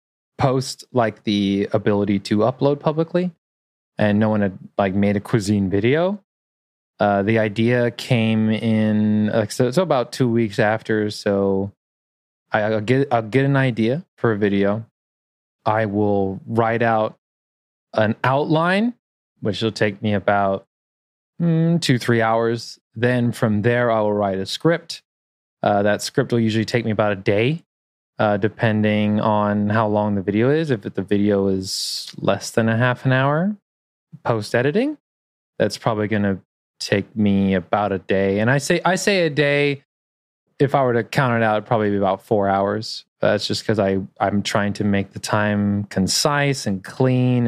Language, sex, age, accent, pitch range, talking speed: English, male, 20-39, American, 100-120 Hz, 170 wpm